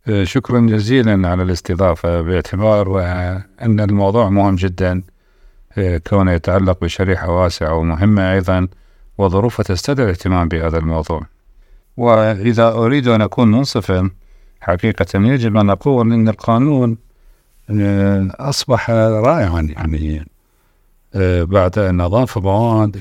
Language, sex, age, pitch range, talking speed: Arabic, male, 50-69, 90-110 Hz, 100 wpm